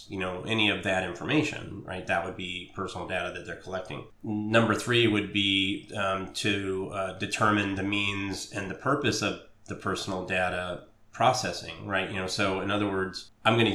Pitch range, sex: 95-105 Hz, male